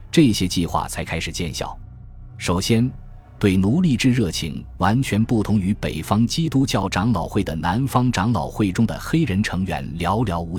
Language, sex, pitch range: Chinese, male, 85-115 Hz